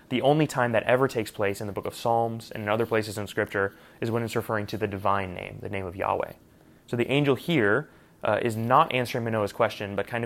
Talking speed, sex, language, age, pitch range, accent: 245 wpm, male, English, 20-39, 105-120 Hz, American